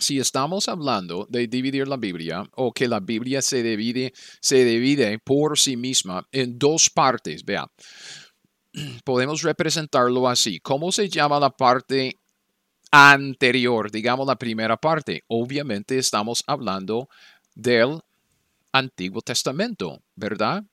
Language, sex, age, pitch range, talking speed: Spanish, male, 40-59, 115-145 Hz, 120 wpm